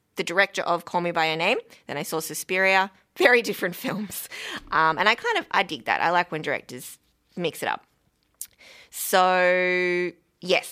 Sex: female